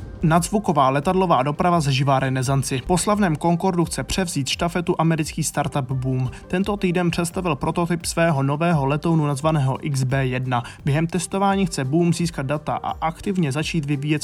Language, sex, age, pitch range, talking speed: Czech, male, 20-39, 135-175 Hz, 140 wpm